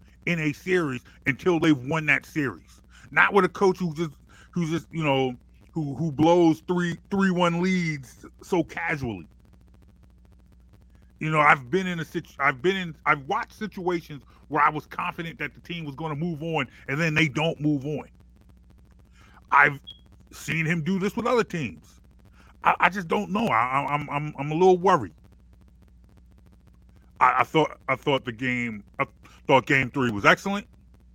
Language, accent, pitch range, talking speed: English, American, 130-170 Hz, 175 wpm